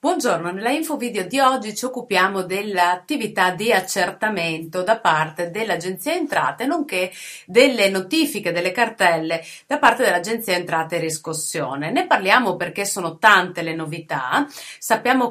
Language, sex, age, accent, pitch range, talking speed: Italian, female, 30-49, native, 175-230 Hz, 130 wpm